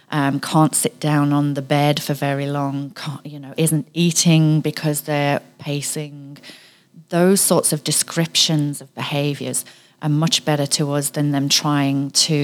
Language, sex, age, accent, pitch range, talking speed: English, female, 30-49, British, 140-160 Hz, 155 wpm